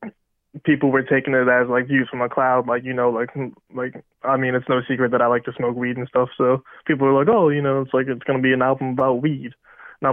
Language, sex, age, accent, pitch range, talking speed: English, male, 20-39, American, 130-140 Hz, 275 wpm